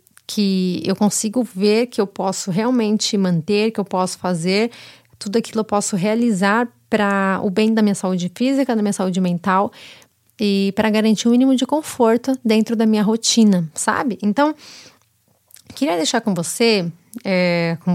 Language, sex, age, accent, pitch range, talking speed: Portuguese, female, 20-39, Brazilian, 190-245 Hz, 165 wpm